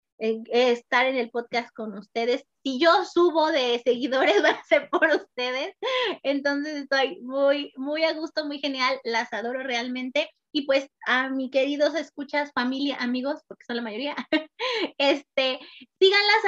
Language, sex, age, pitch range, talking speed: Spanish, female, 20-39, 250-315 Hz, 150 wpm